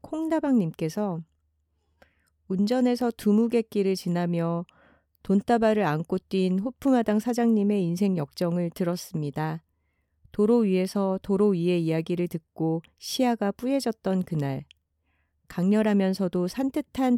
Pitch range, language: 165-215 Hz, Korean